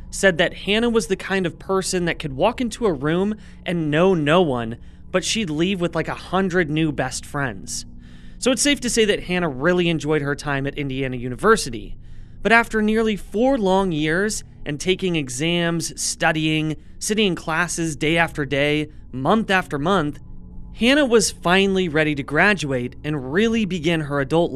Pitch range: 145-195 Hz